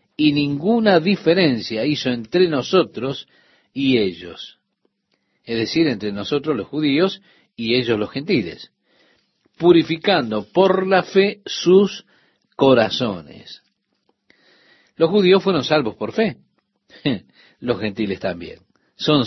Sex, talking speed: male, 105 wpm